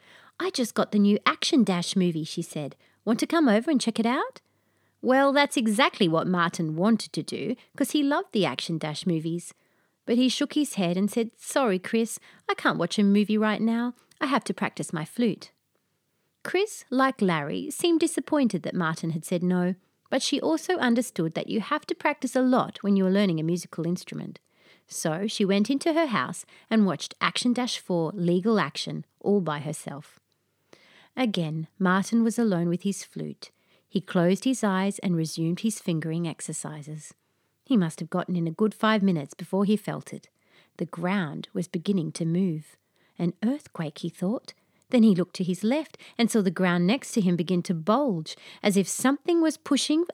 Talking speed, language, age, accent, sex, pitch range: 190 wpm, English, 30-49, Australian, female, 175-250 Hz